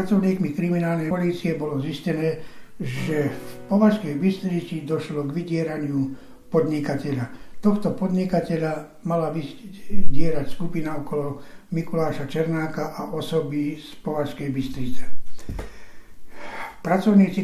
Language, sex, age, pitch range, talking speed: Slovak, male, 60-79, 145-170 Hz, 95 wpm